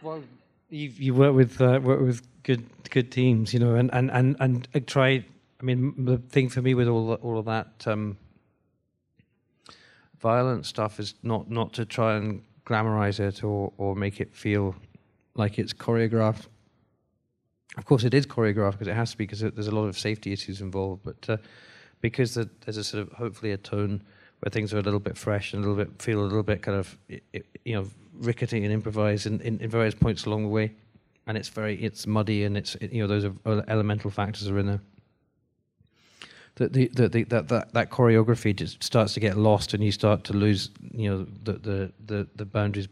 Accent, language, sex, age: British, English, male, 40-59